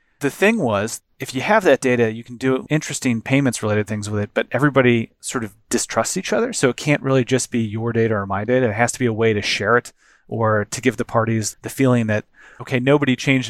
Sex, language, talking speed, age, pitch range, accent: male, English, 245 wpm, 30-49, 110-135 Hz, American